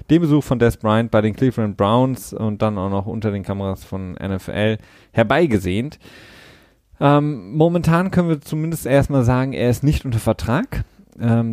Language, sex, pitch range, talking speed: German, male, 100-130 Hz, 165 wpm